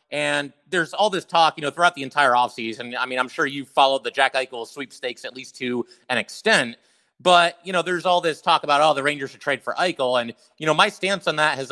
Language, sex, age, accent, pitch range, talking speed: English, male, 30-49, American, 125-160 Hz, 250 wpm